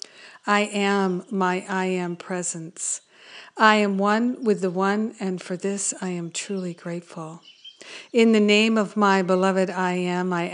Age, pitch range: 50-69, 180-205 Hz